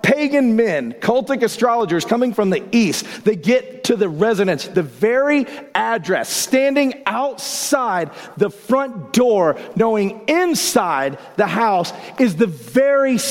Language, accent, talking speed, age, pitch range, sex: English, American, 125 wpm, 40-59, 195-255 Hz, male